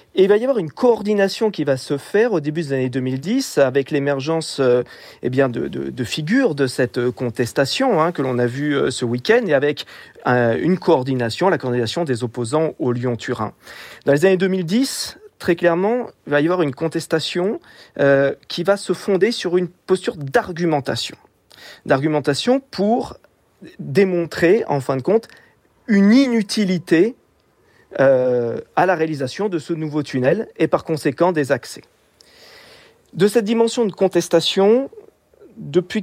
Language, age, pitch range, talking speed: French, 40-59, 140-200 Hz, 160 wpm